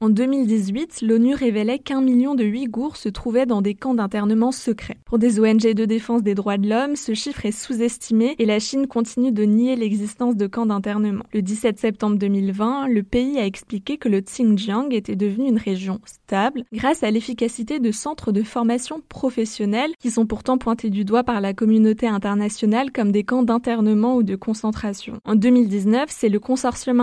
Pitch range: 215-245 Hz